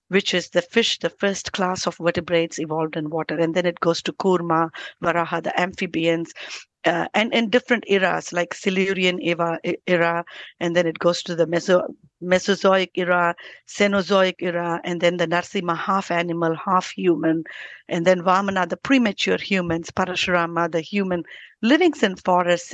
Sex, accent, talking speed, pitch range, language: female, Indian, 155 wpm, 170-200 Hz, English